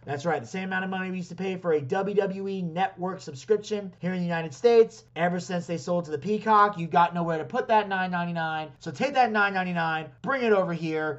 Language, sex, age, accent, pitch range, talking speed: English, male, 30-49, American, 150-195 Hz, 240 wpm